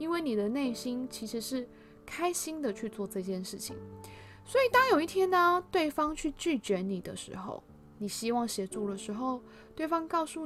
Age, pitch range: 20-39, 195-300 Hz